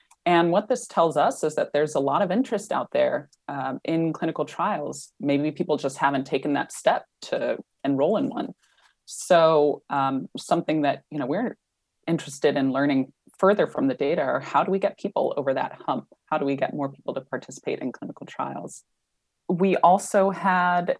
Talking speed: 185 wpm